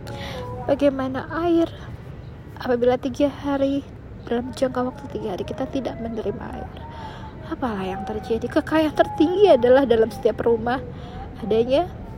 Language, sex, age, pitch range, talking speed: Indonesian, female, 20-39, 205-260 Hz, 120 wpm